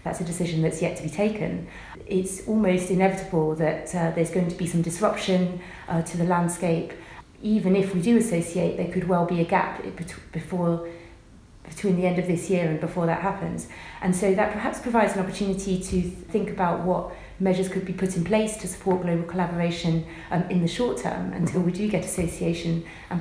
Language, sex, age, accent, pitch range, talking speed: English, female, 30-49, British, 170-195 Hz, 205 wpm